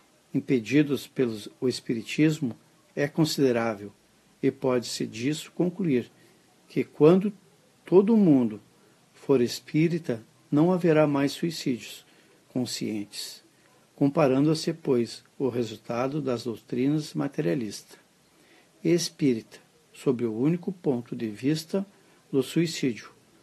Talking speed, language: 95 wpm, Portuguese